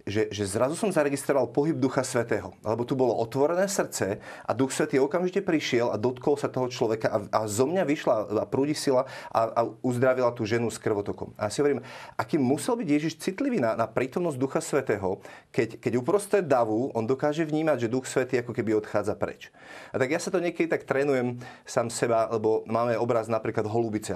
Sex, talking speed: male, 200 wpm